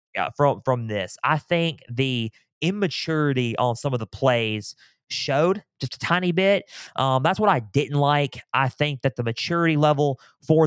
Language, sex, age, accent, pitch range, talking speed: English, male, 20-39, American, 125-160 Hz, 175 wpm